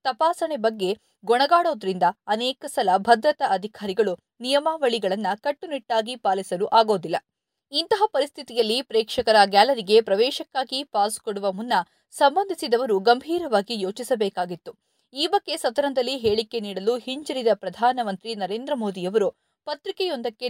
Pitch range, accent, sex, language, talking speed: 200-275 Hz, native, female, Kannada, 95 wpm